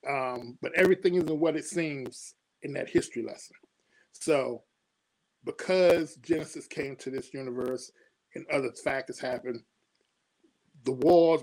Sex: male